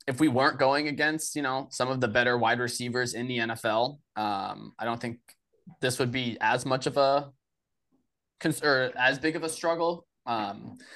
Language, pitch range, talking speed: English, 115-135 Hz, 185 wpm